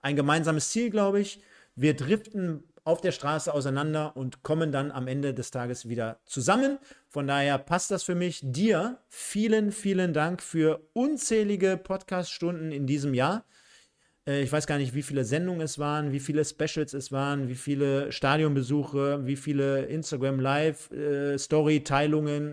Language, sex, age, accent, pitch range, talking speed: German, male, 40-59, German, 140-170 Hz, 150 wpm